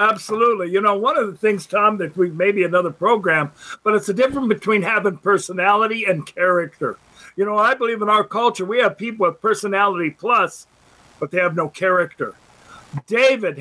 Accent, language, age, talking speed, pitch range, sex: American, English, 50-69, 185 wpm, 185-235 Hz, male